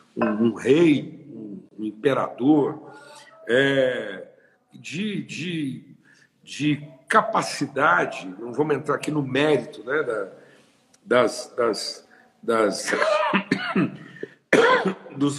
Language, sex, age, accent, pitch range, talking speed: Portuguese, male, 60-79, Brazilian, 150-205 Hz, 65 wpm